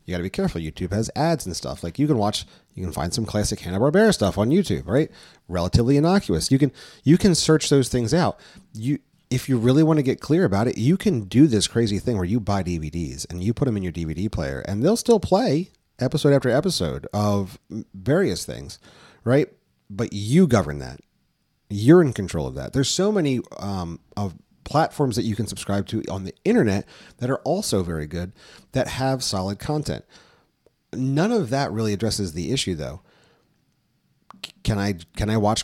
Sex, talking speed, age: male, 200 wpm, 30-49